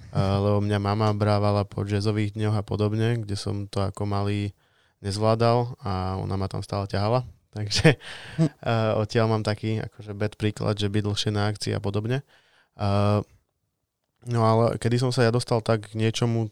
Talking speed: 175 wpm